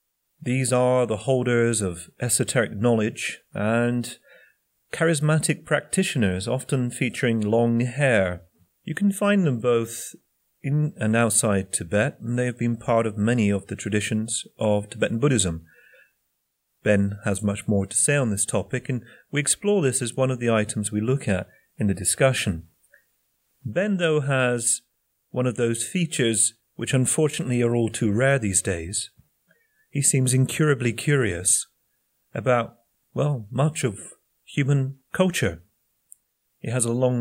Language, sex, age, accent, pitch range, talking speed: English, male, 30-49, British, 110-135 Hz, 145 wpm